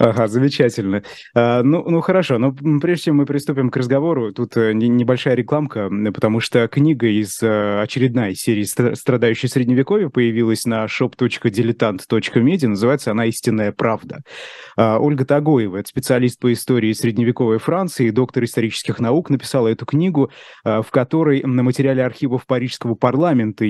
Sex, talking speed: male, 130 wpm